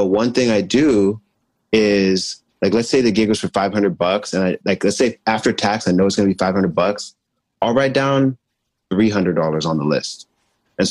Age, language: 30-49, English